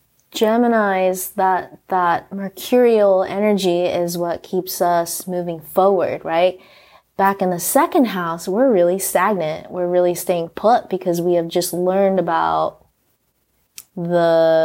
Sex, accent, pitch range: female, American, 170-195 Hz